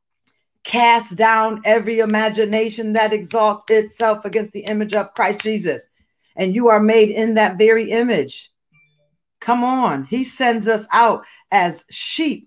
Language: English